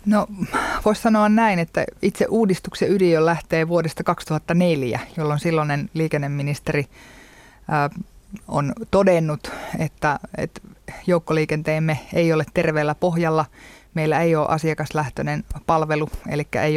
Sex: female